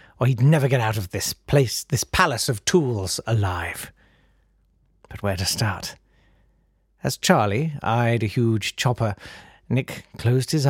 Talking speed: 145 wpm